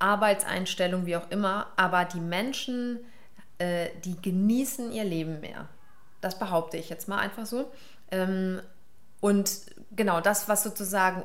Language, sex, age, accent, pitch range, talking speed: German, female, 30-49, German, 180-215 Hz, 140 wpm